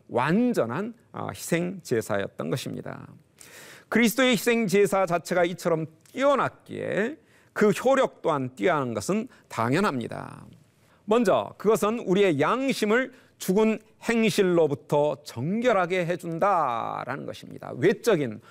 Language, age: Korean, 40-59